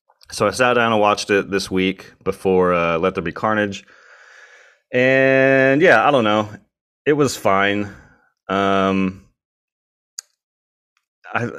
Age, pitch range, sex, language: 30-49, 95-150 Hz, male, English